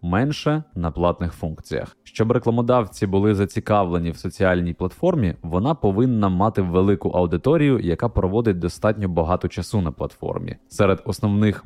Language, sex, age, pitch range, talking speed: Ukrainian, male, 20-39, 85-110 Hz, 130 wpm